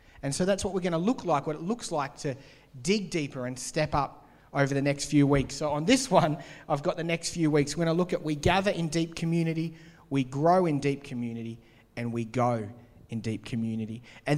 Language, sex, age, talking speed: English, male, 30-49, 235 wpm